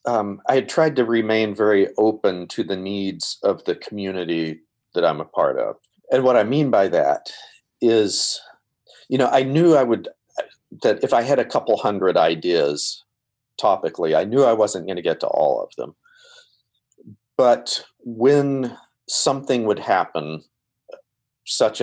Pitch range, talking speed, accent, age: 90-115 Hz, 160 wpm, American, 40-59